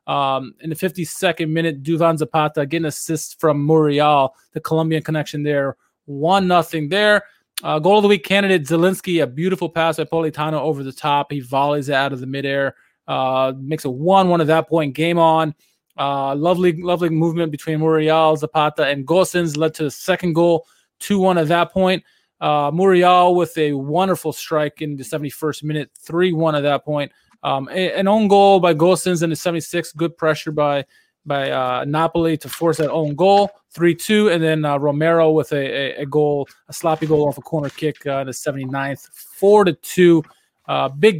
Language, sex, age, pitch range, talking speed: English, male, 20-39, 145-175 Hz, 185 wpm